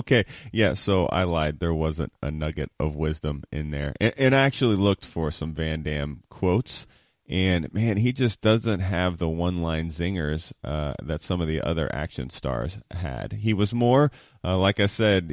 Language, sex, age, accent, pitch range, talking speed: English, male, 30-49, American, 80-110 Hz, 190 wpm